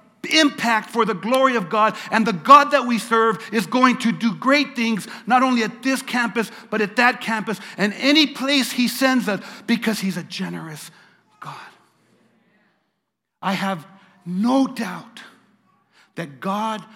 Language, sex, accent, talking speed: English, male, American, 155 wpm